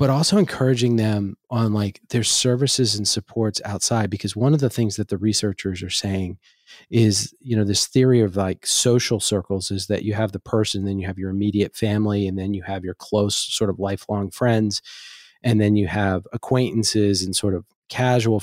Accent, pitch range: American, 95-115 Hz